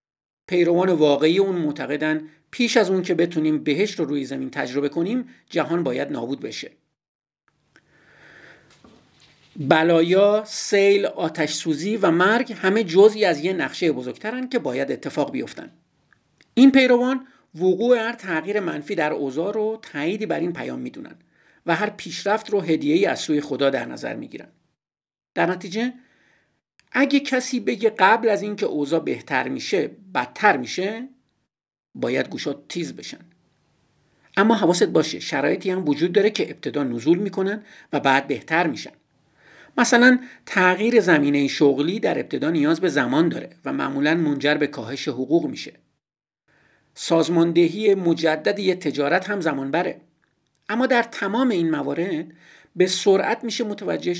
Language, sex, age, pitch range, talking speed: Persian, male, 50-69, 155-215 Hz, 140 wpm